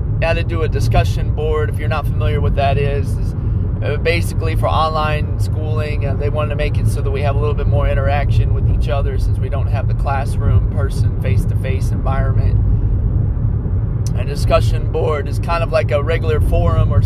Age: 30-49